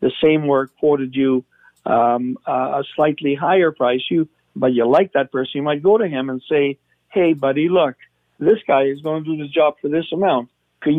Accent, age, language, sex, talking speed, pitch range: American, 60-79, English, male, 215 wpm, 130-165 Hz